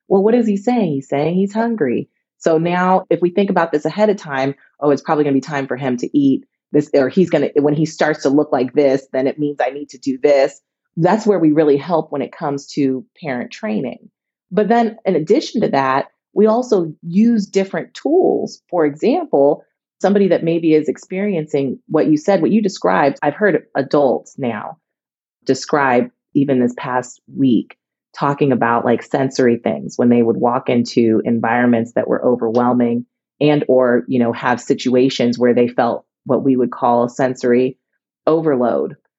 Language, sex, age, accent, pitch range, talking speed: English, female, 30-49, American, 130-165 Hz, 185 wpm